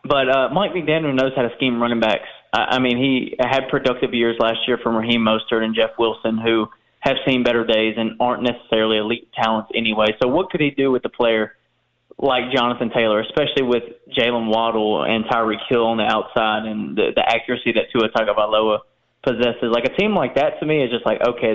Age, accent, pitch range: 20-39, American, 115-130 Hz